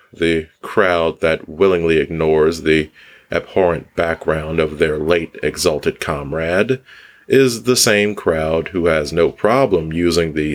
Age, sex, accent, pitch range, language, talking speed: 40-59, male, American, 75-95 Hz, English, 130 wpm